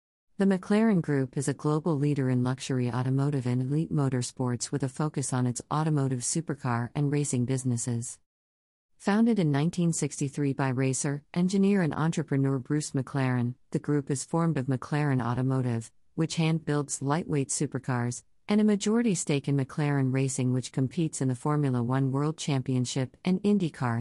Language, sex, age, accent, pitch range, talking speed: English, female, 40-59, American, 130-160 Hz, 155 wpm